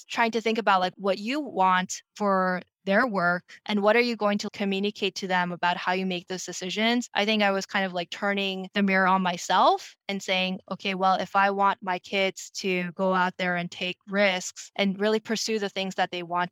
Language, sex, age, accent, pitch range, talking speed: English, female, 20-39, American, 185-220 Hz, 225 wpm